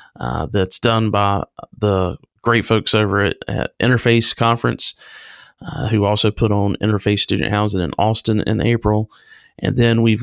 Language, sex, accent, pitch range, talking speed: English, male, American, 105-130 Hz, 160 wpm